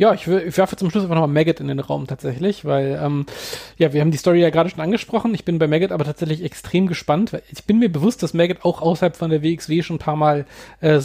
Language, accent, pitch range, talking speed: German, German, 150-180 Hz, 270 wpm